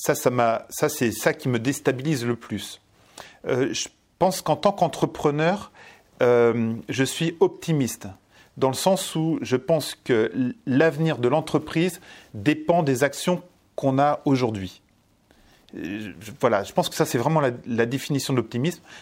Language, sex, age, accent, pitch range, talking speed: French, male, 40-59, French, 120-170 Hz, 160 wpm